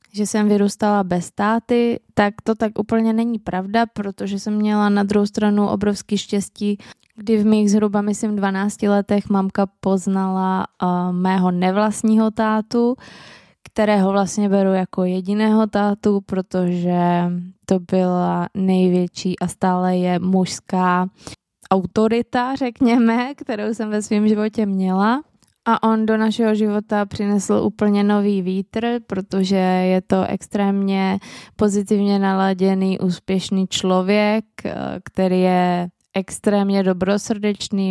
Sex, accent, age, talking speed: female, native, 20-39, 120 wpm